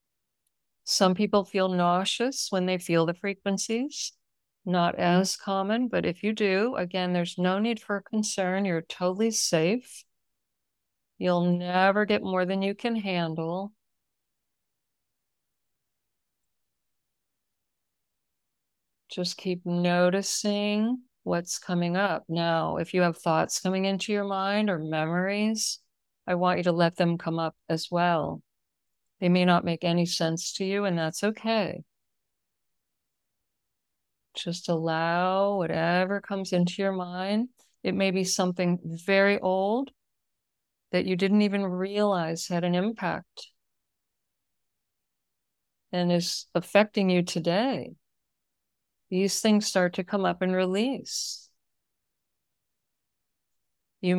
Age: 60-79